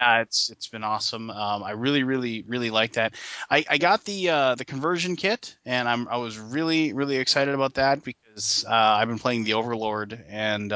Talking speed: 205 wpm